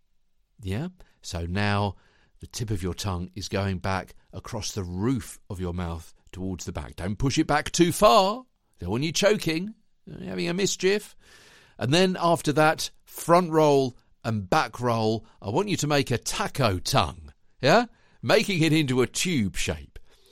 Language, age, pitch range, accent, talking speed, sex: English, 50-69, 90-150 Hz, British, 170 wpm, male